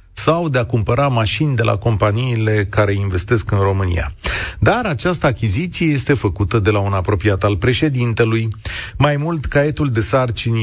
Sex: male